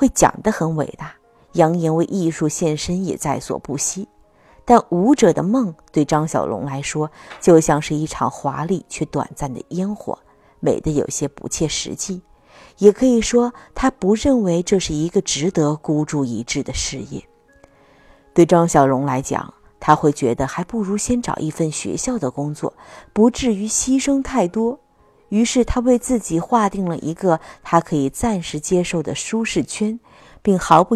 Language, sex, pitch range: Chinese, female, 150-215 Hz